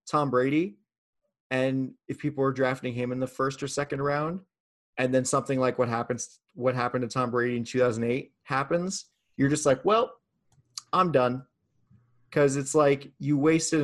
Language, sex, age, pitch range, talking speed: English, male, 30-49, 120-145 Hz, 170 wpm